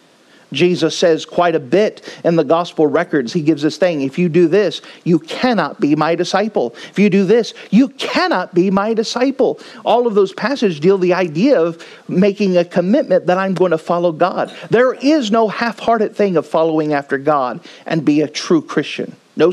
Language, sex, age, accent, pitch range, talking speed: English, male, 40-59, American, 165-235 Hz, 195 wpm